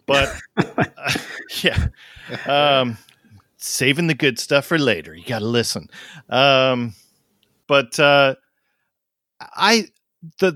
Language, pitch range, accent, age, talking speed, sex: English, 110-140 Hz, American, 40-59, 100 wpm, male